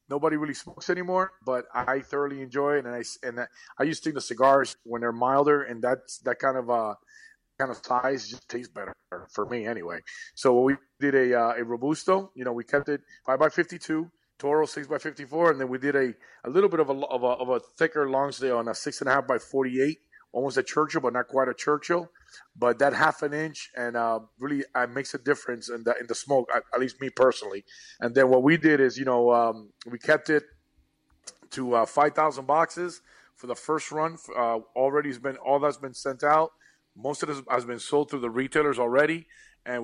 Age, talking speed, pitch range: 30-49, 225 wpm, 125-145 Hz